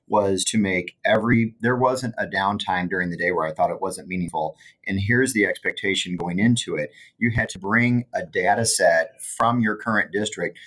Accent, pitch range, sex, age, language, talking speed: American, 90-110 Hz, male, 30-49, English, 195 wpm